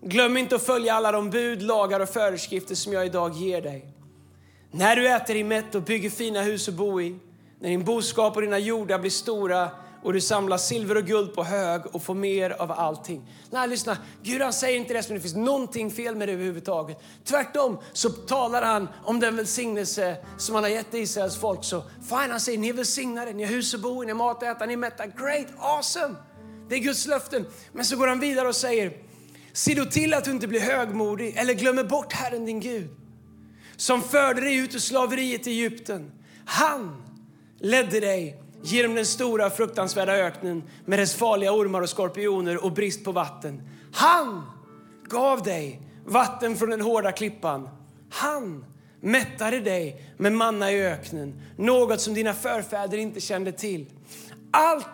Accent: native